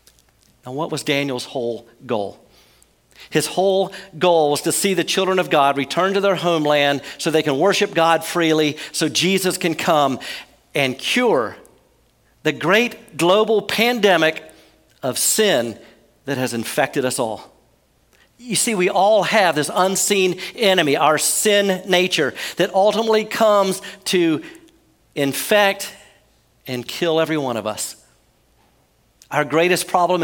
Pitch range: 160-210 Hz